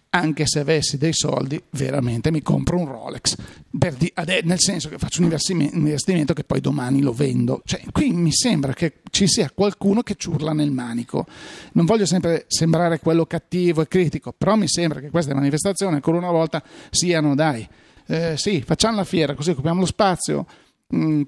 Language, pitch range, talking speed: Italian, 150-185 Hz, 185 wpm